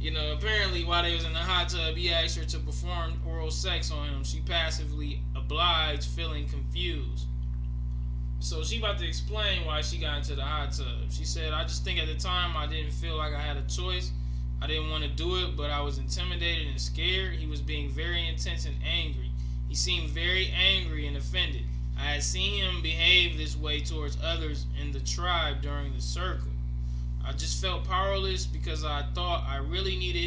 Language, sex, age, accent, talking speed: English, male, 20-39, American, 200 wpm